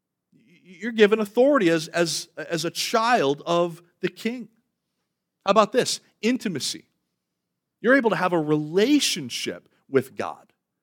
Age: 40-59